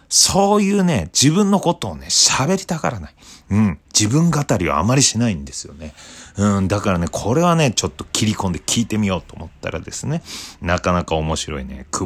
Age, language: 40-59, Japanese